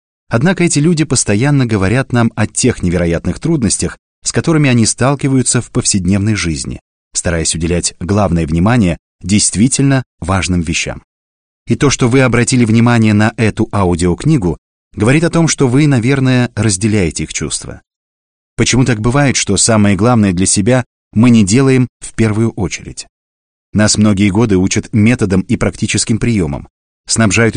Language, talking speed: Russian, 140 wpm